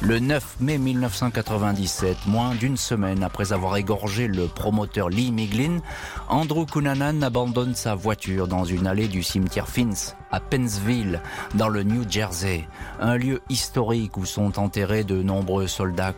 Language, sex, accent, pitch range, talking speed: French, male, French, 90-120 Hz, 150 wpm